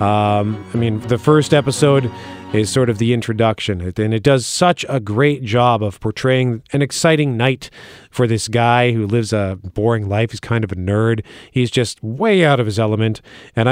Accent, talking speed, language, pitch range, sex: American, 195 wpm, English, 110-140 Hz, male